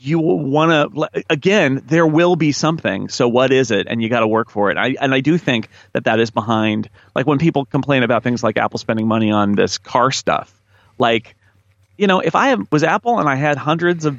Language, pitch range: English, 110-150 Hz